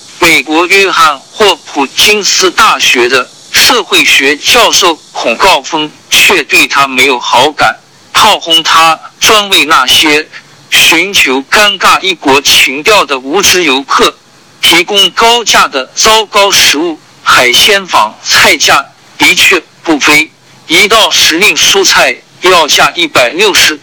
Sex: male